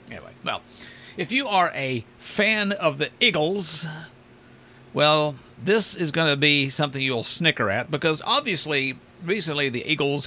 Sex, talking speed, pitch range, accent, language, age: male, 145 wpm, 125-180 Hz, American, English, 50-69